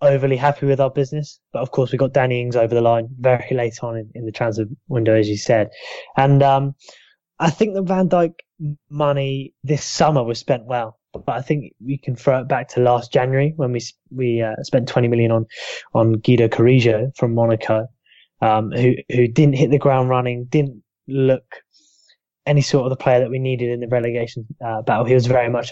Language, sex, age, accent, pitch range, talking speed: English, male, 10-29, British, 115-135 Hz, 210 wpm